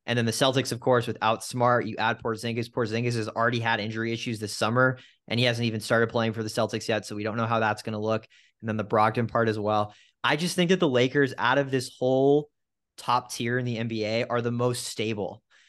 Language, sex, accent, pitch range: English, male, American, 110-130 Hz